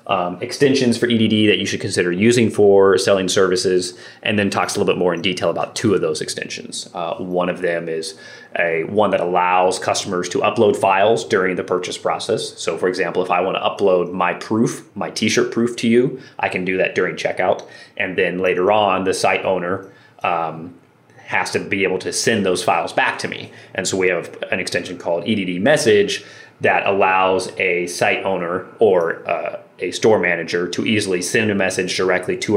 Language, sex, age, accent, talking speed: English, male, 30-49, American, 200 wpm